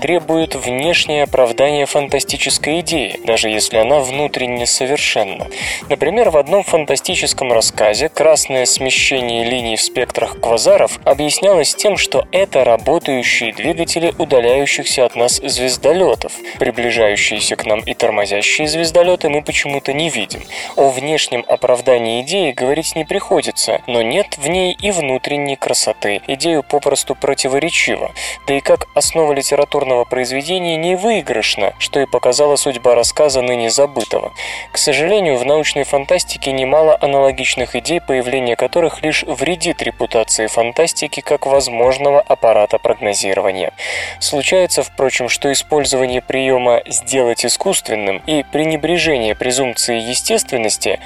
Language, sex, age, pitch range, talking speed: Russian, male, 20-39, 125-155 Hz, 120 wpm